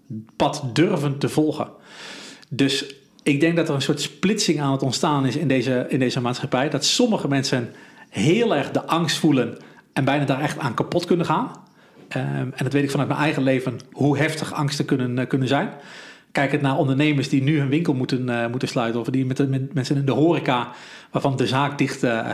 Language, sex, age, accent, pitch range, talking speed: Dutch, male, 40-59, Dutch, 135-160 Hz, 210 wpm